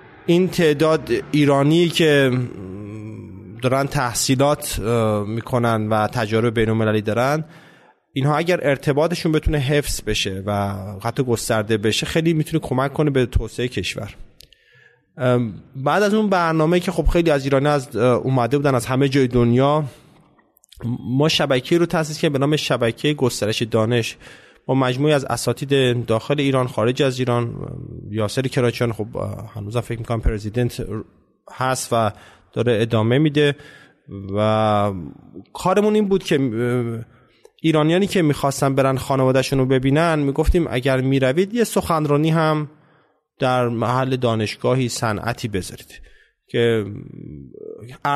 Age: 30-49